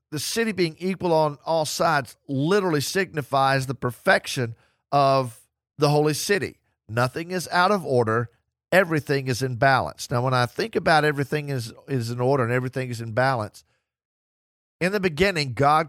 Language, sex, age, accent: English, male, 50-69, American